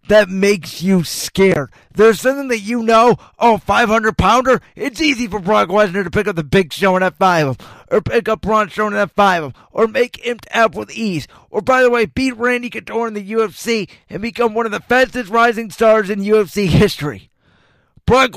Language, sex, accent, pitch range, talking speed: English, male, American, 185-235 Hz, 205 wpm